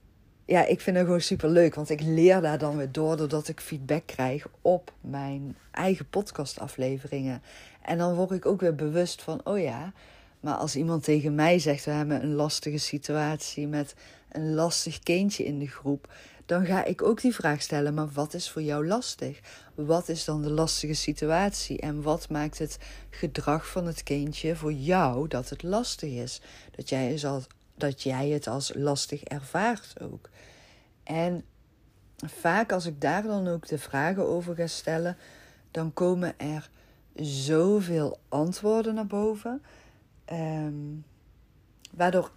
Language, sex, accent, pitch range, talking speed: Dutch, female, Dutch, 145-175 Hz, 160 wpm